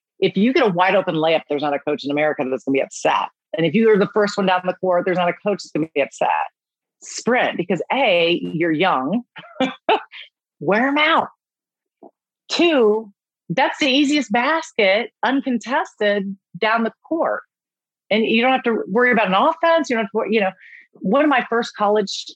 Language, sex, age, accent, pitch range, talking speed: English, female, 40-59, American, 190-260 Hz, 200 wpm